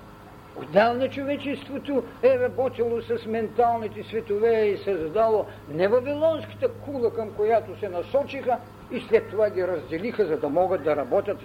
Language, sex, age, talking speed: Bulgarian, male, 50-69, 135 wpm